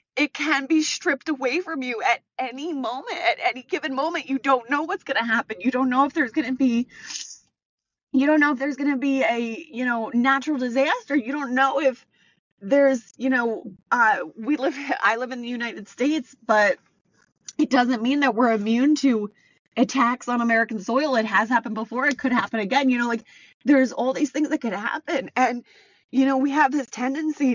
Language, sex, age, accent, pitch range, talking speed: English, female, 20-39, American, 235-290 Hz, 205 wpm